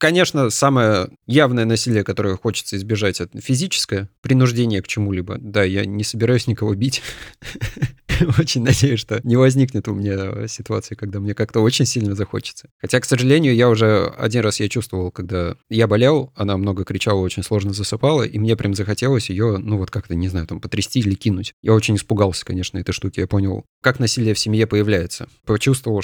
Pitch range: 100-125 Hz